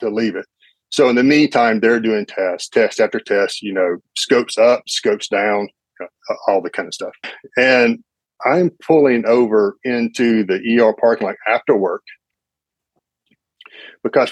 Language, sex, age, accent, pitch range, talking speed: English, male, 40-59, American, 100-125 Hz, 150 wpm